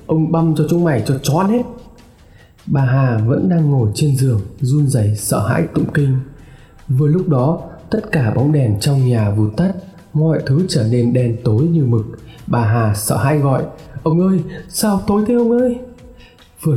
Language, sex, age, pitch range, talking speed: Vietnamese, male, 20-39, 120-160 Hz, 190 wpm